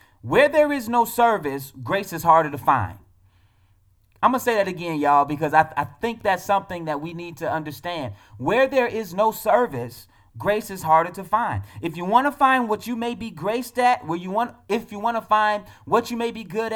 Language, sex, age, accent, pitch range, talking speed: English, male, 30-49, American, 150-220 Hz, 225 wpm